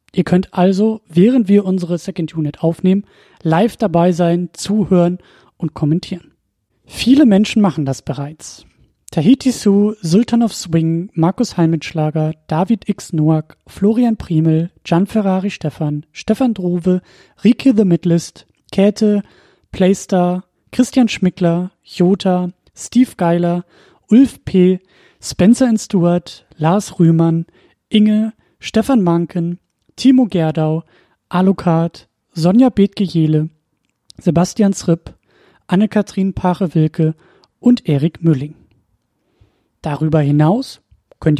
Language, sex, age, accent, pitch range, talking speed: German, male, 30-49, German, 155-205 Hz, 105 wpm